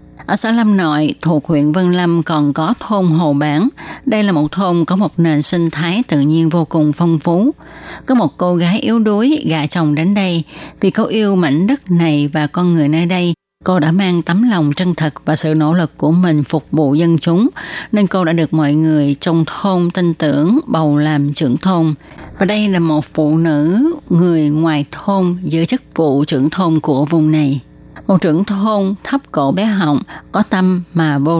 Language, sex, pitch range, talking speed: Vietnamese, female, 155-190 Hz, 205 wpm